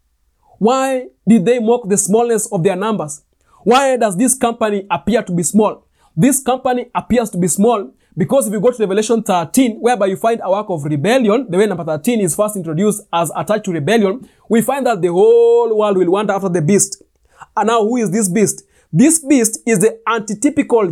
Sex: male